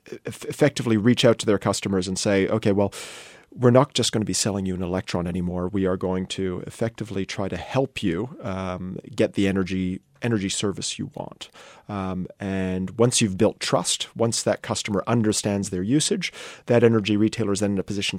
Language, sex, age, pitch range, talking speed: English, male, 40-59, 100-120 Hz, 190 wpm